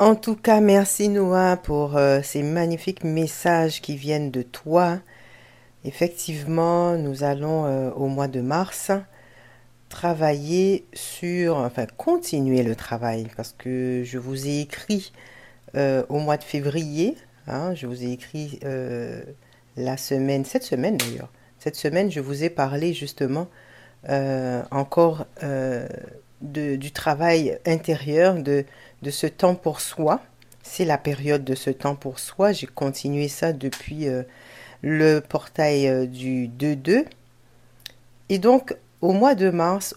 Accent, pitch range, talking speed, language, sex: French, 130-165 Hz, 140 wpm, French, female